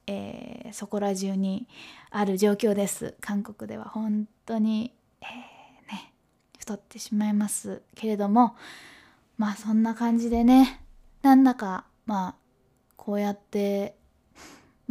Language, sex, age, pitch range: Japanese, female, 20-39, 200-230 Hz